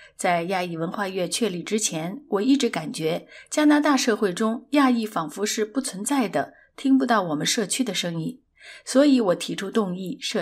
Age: 30-49